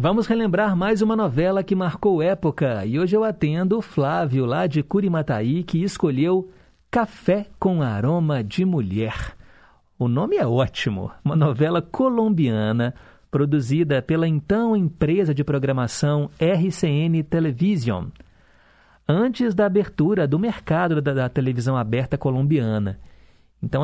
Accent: Brazilian